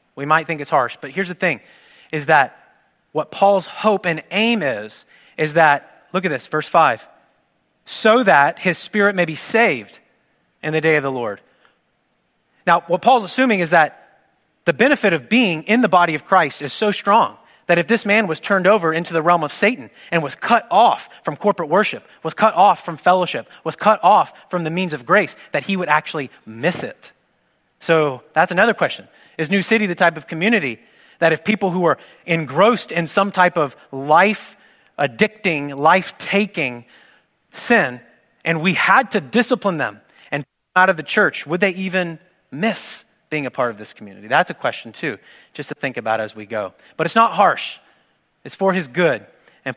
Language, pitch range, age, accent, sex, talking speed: English, 145-200 Hz, 30-49, American, male, 195 wpm